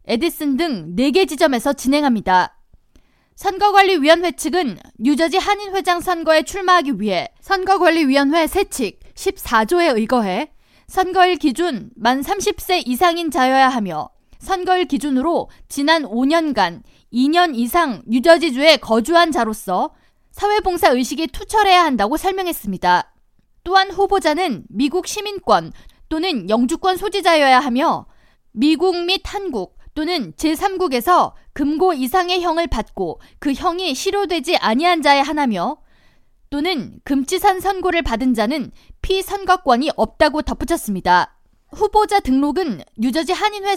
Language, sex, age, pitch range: Korean, female, 20-39, 255-365 Hz